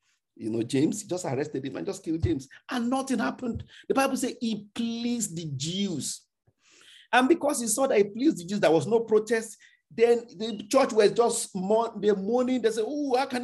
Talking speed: 200 wpm